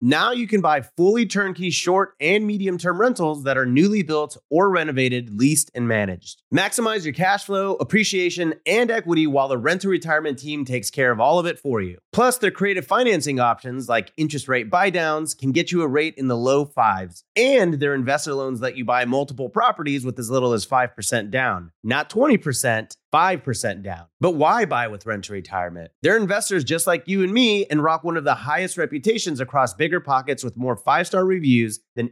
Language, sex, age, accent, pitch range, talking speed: English, male, 30-49, American, 120-180 Hz, 200 wpm